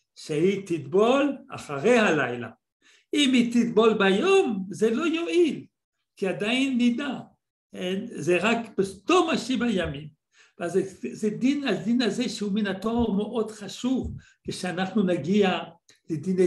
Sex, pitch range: male, 175-245 Hz